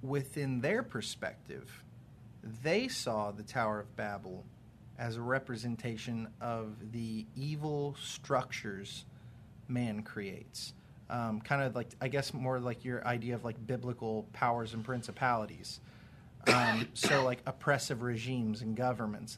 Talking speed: 125 wpm